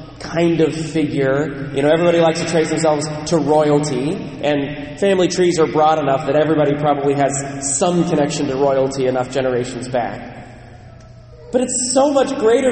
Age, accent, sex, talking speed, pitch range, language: 30-49, American, male, 160 wpm, 135-220 Hz, English